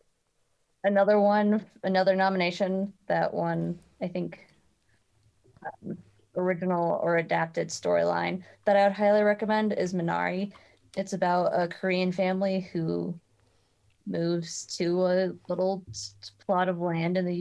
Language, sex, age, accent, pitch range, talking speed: English, female, 20-39, American, 155-190 Hz, 120 wpm